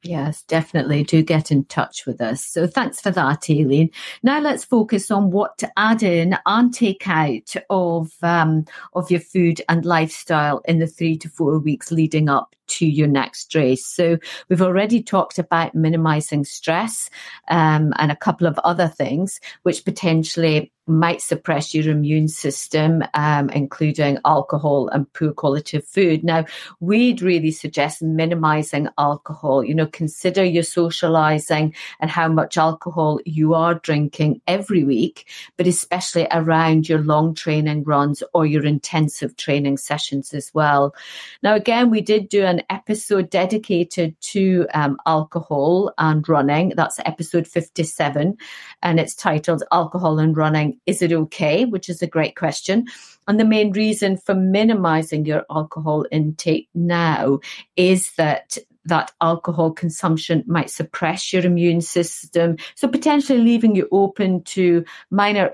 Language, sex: English, female